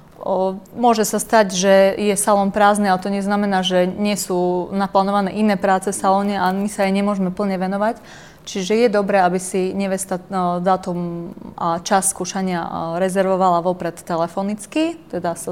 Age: 20-39